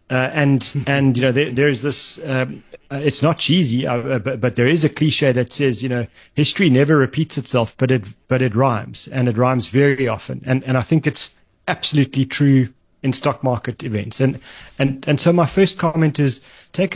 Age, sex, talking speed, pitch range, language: 30-49, male, 210 wpm, 125-150 Hz, English